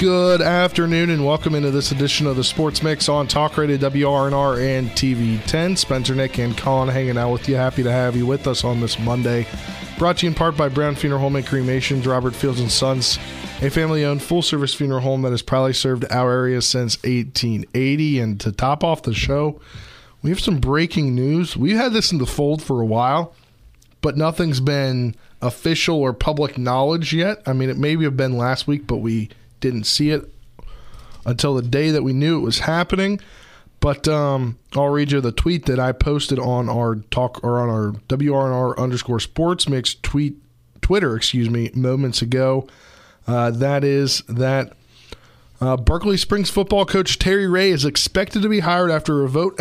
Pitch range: 125-155 Hz